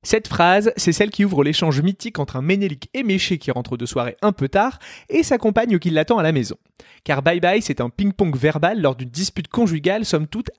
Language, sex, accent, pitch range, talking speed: French, male, French, 145-210 Hz, 230 wpm